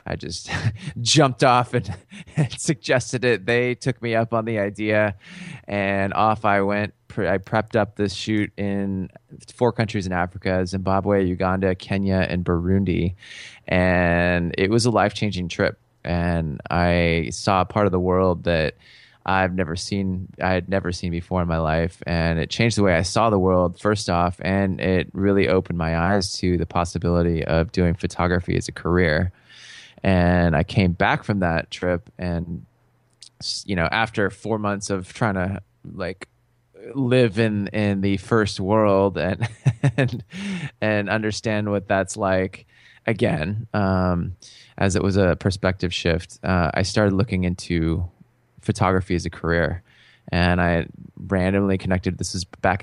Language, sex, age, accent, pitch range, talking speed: English, male, 20-39, American, 90-110 Hz, 160 wpm